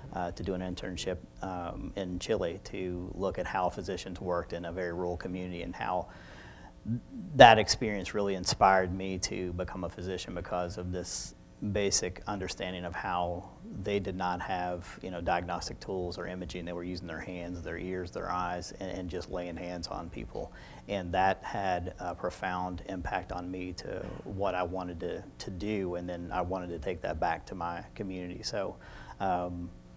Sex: male